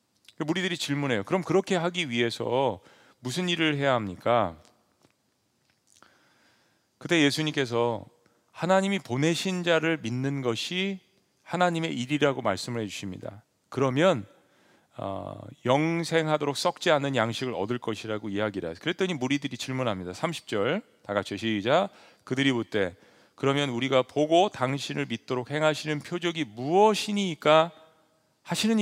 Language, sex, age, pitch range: Korean, male, 40-59, 120-165 Hz